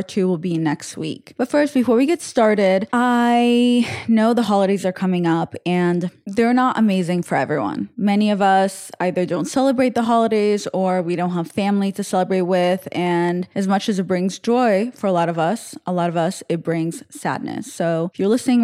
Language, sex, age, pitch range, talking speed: English, female, 20-39, 170-205 Hz, 205 wpm